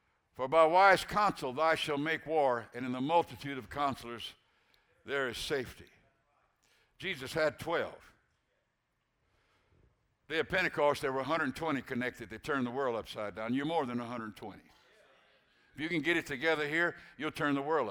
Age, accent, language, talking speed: 60-79, American, English, 160 wpm